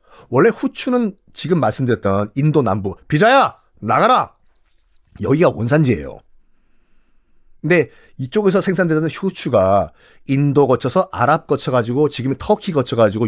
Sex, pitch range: male, 115-185 Hz